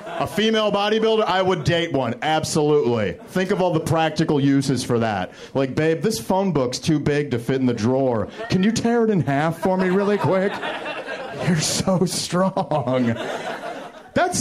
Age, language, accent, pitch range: 40-59, English, American, 125-185 Hz